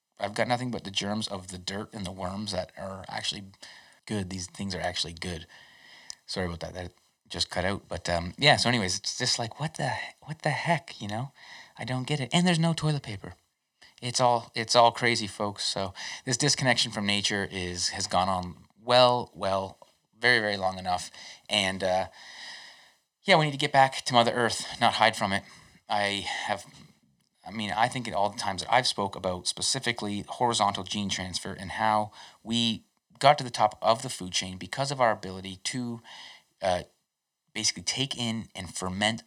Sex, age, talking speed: male, 30-49, 195 wpm